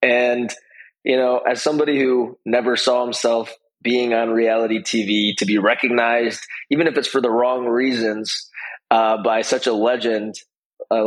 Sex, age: male, 20-39